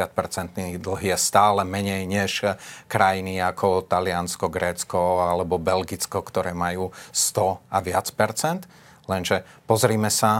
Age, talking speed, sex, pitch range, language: 30-49, 115 wpm, male, 100-115 Hz, Slovak